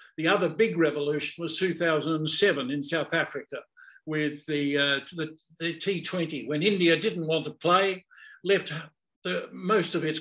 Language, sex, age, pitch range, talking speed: English, male, 50-69, 155-185 Hz, 155 wpm